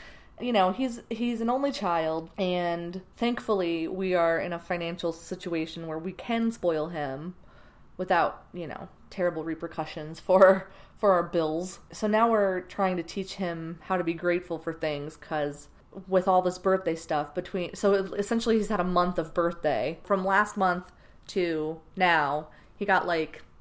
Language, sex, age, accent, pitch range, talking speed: English, female, 30-49, American, 165-210 Hz, 165 wpm